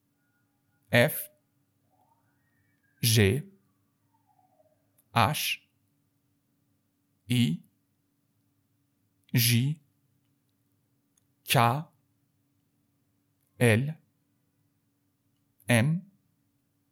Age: 60-79